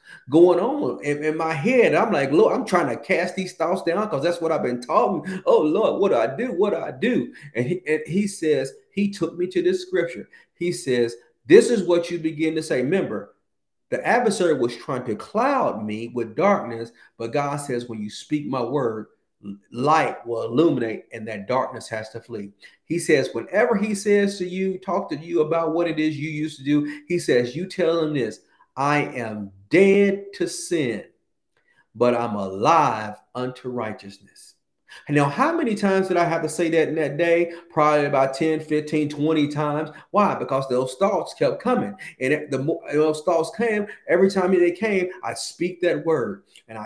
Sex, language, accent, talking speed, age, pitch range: male, English, American, 195 wpm, 40-59, 135-185 Hz